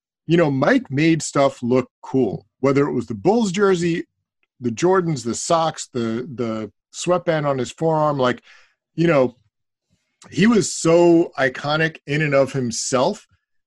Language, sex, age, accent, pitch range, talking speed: English, male, 30-49, American, 120-160 Hz, 150 wpm